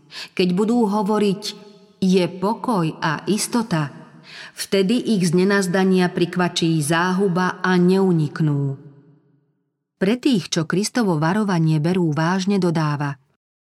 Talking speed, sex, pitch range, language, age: 95 wpm, female, 160-200 Hz, Slovak, 40-59